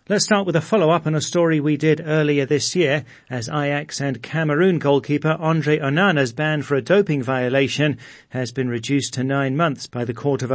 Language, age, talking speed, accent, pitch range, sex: English, 40-59, 200 wpm, British, 125-155 Hz, male